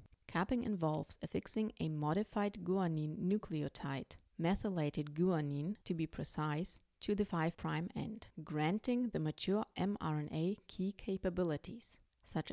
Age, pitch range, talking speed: 30-49, 155-200 Hz, 110 wpm